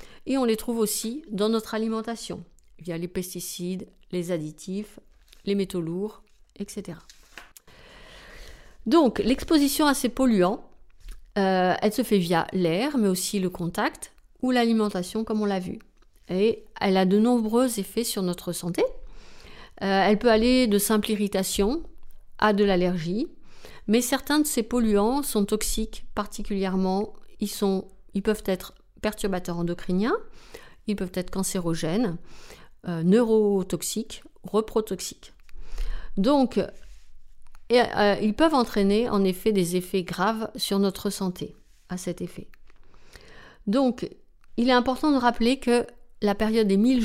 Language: French